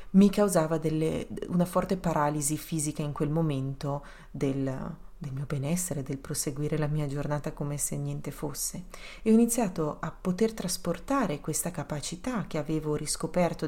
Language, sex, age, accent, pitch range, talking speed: Italian, female, 30-49, native, 155-195 Hz, 145 wpm